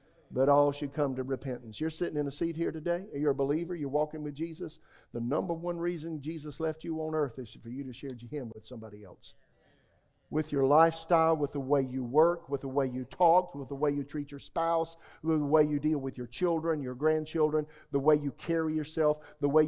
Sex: male